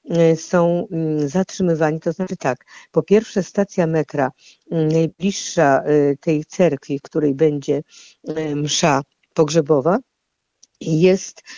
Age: 50-69